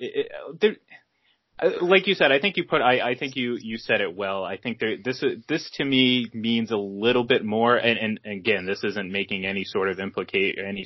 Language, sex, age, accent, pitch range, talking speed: English, male, 20-39, American, 100-135 Hz, 250 wpm